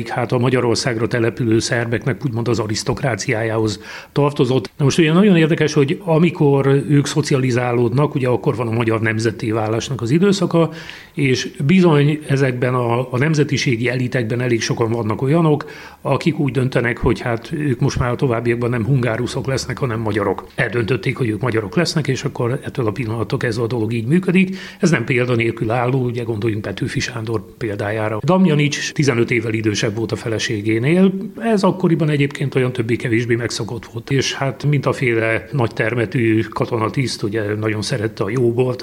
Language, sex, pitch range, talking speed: Hungarian, male, 115-140 Hz, 160 wpm